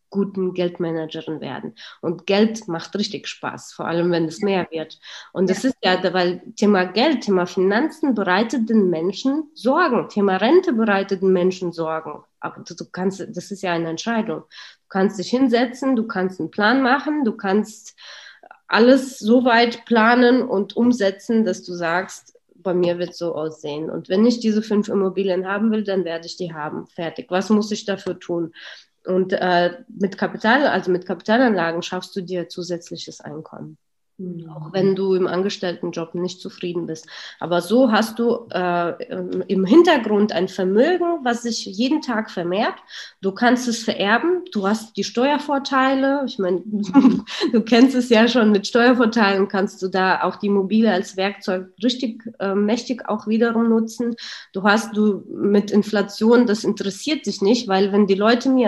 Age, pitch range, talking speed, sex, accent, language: 20-39, 185-235 Hz, 170 wpm, female, German, German